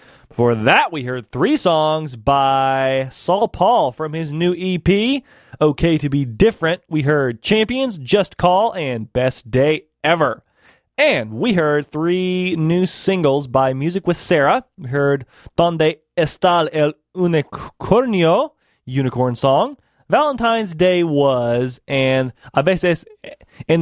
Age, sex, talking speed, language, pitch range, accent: 20-39, male, 130 wpm, English, 135-180 Hz, American